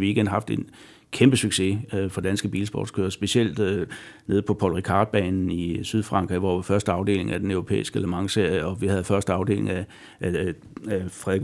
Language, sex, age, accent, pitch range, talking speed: Danish, male, 60-79, native, 95-110 Hz, 185 wpm